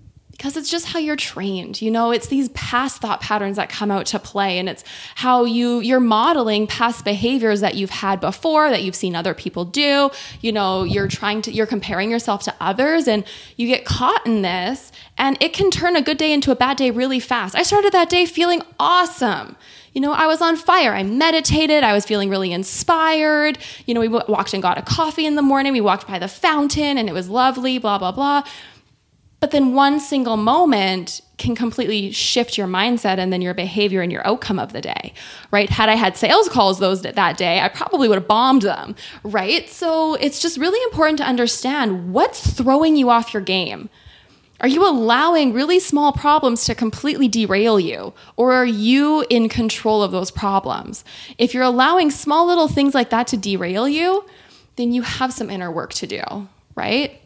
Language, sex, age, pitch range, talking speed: English, female, 20-39, 205-290 Hz, 200 wpm